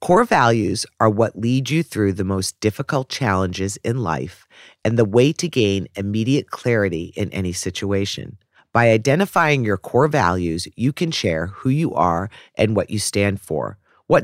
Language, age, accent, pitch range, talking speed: English, 40-59, American, 95-125 Hz, 170 wpm